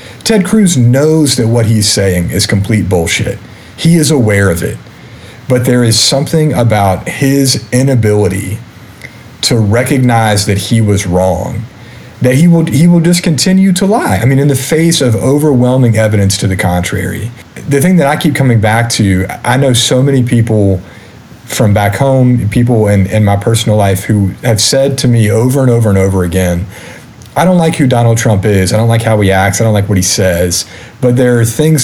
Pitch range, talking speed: 100-130 Hz, 195 wpm